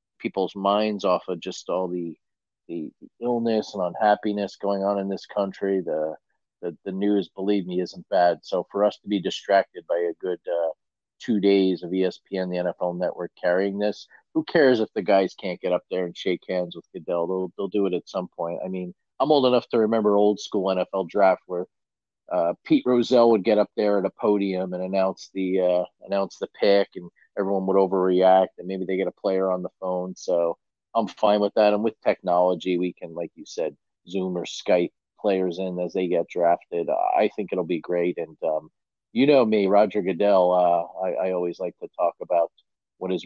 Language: English